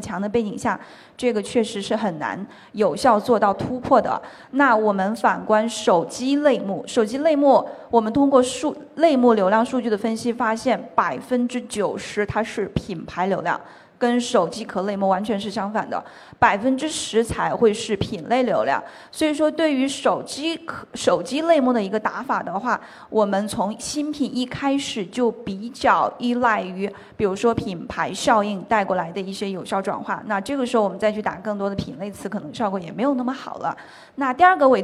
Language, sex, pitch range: Chinese, female, 205-255 Hz